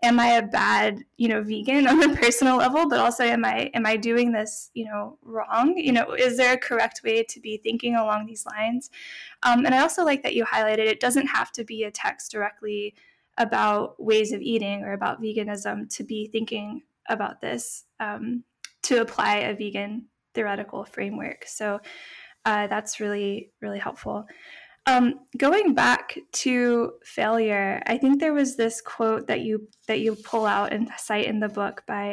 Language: English